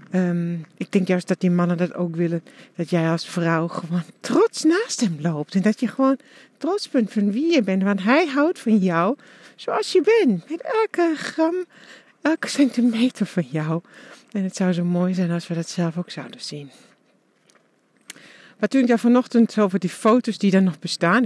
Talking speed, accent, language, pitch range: 195 wpm, Dutch, English, 165-210 Hz